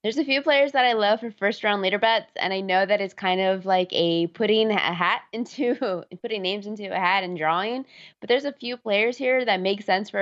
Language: English